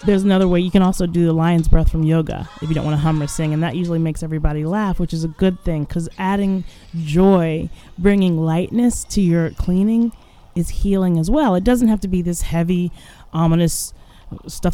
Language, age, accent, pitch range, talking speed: English, 20-39, American, 160-185 Hz, 210 wpm